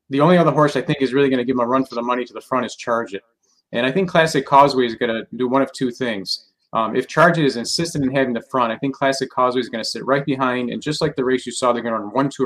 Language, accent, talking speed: English, American, 330 wpm